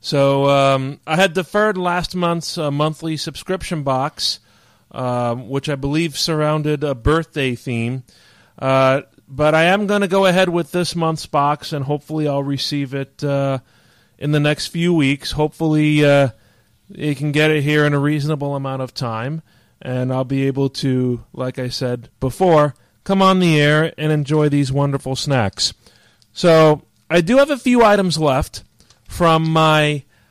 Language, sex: English, male